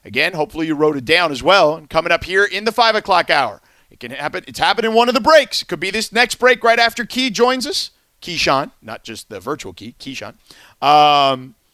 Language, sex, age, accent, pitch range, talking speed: English, male, 40-59, American, 155-235 Hz, 235 wpm